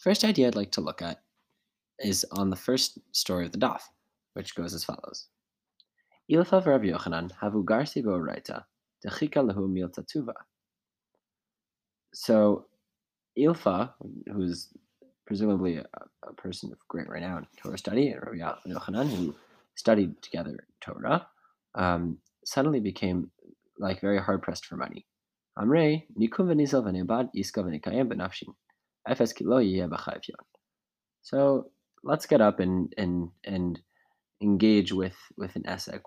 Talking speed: 110 wpm